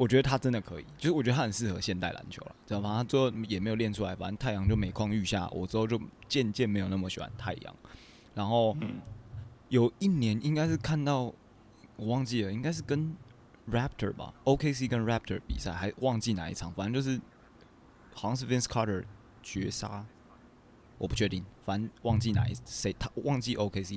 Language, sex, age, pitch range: Chinese, male, 20-39, 95-120 Hz